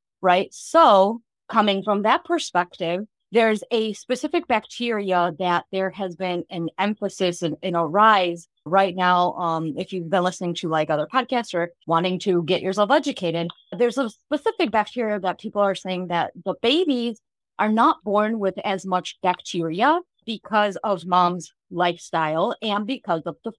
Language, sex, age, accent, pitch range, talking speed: English, female, 30-49, American, 180-240 Hz, 160 wpm